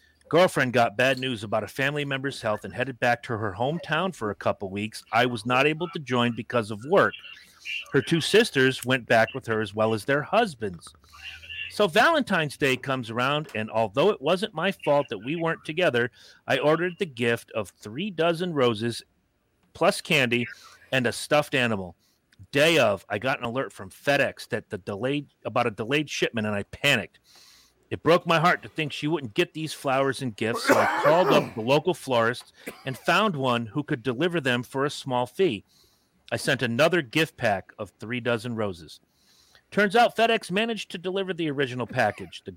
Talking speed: 195 wpm